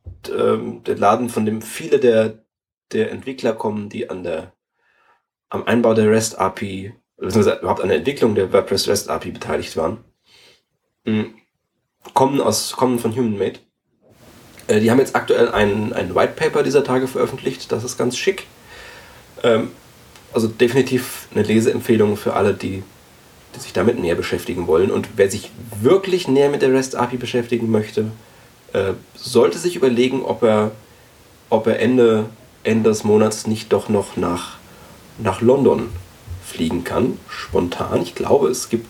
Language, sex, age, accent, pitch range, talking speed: German, male, 30-49, German, 105-130 Hz, 140 wpm